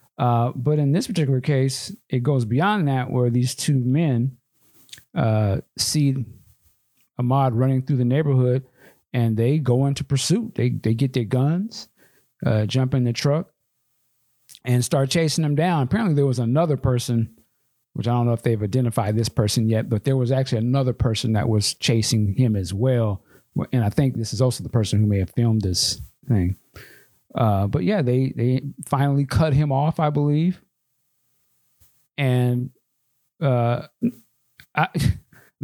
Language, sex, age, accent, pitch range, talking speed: English, male, 50-69, American, 115-140 Hz, 160 wpm